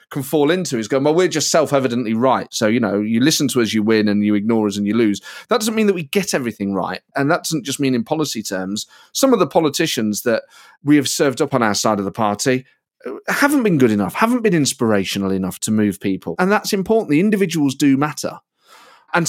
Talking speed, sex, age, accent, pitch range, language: 235 wpm, male, 30-49, British, 115-170 Hz, English